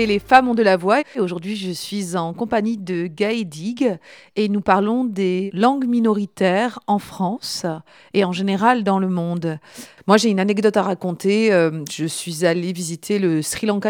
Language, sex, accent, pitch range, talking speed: French, female, French, 175-215 Hz, 175 wpm